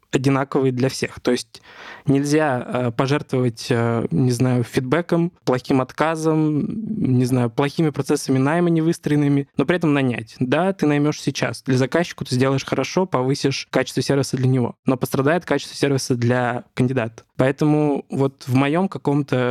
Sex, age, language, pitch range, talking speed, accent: male, 20-39, Russian, 125-150 Hz, 150 wpm, native